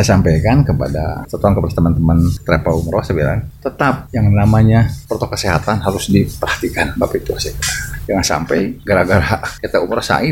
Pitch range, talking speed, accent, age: 160-200 Hz, 120 wpm, native, 30-49